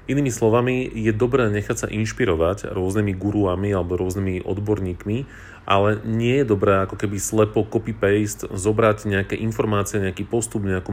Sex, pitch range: male, 100-115 Hz